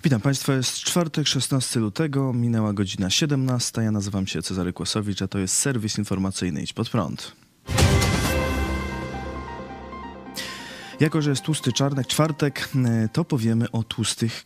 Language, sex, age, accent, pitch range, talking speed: Polish, male, 20-39, native, 100-130 Hz, 135 wpm